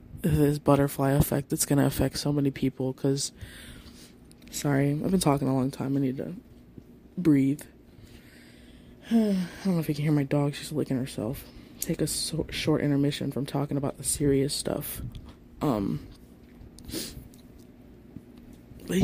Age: 20-39